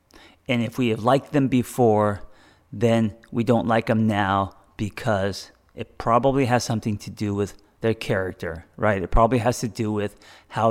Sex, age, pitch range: male, 30-49, 100-125 Hz